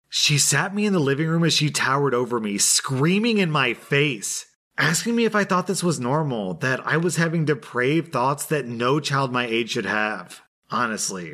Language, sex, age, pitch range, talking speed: English, male, 30-49, 115-150 Hz, 200 wpm